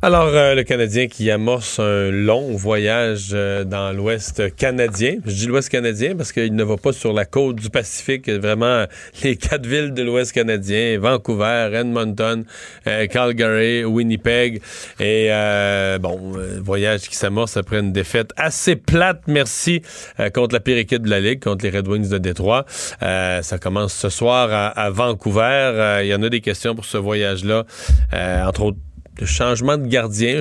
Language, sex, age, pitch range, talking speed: French, male, 30-49, 100-125 Hz, 175 wpm